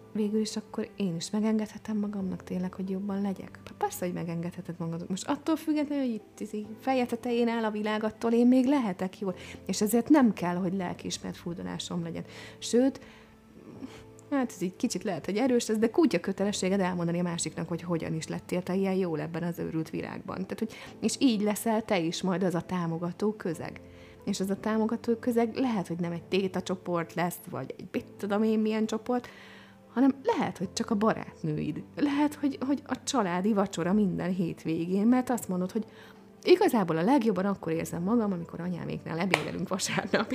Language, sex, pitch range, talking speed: Hungarian, female, 180-240 Hz, 185 wpm